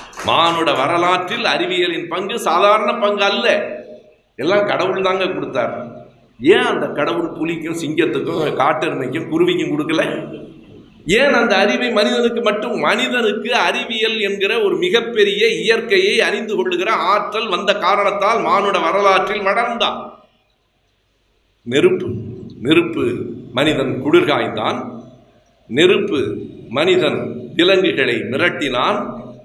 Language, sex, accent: Tamil, male, native